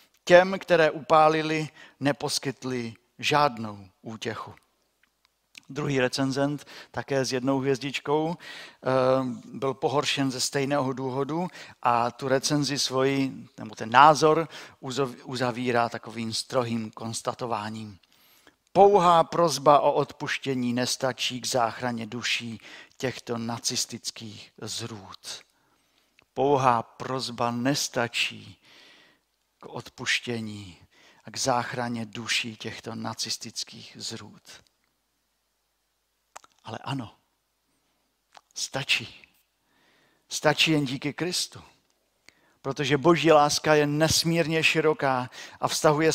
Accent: native